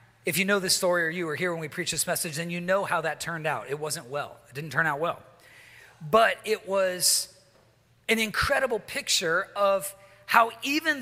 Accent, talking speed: American, 205 wpm